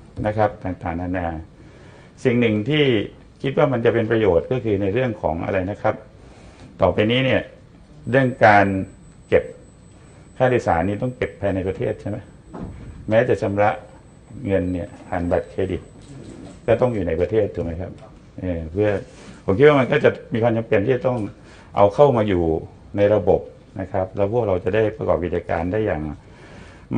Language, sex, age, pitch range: Thai, male, 60-79, 90-115 Hz